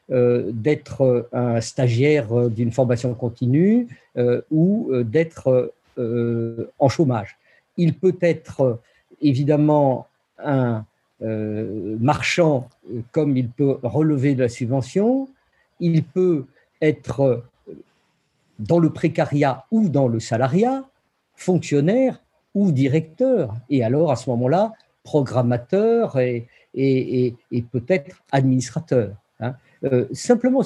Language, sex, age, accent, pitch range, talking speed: French, male, 50-69, French, 125-170 Hz, 100 wpm